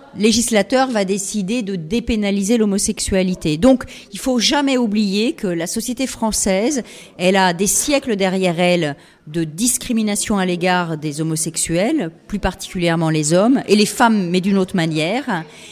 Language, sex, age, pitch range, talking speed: French, female, 40-59, 180-235 Hz, 145 wpm